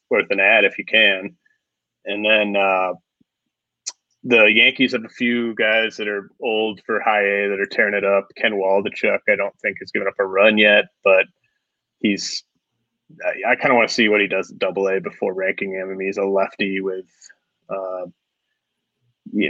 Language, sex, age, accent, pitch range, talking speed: English, male, 20-39, American, 100-110 Hz, 190 wpm